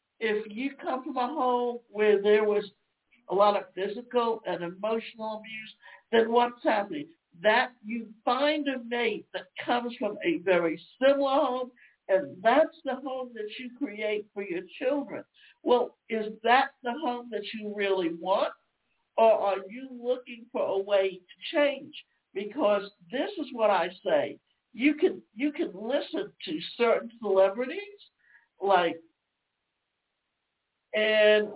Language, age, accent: English, 60-79, American